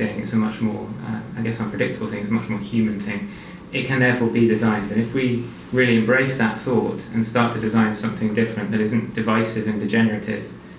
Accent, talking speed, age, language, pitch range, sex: British, 210 wpm, 20-39, English, 110-120 Hz, male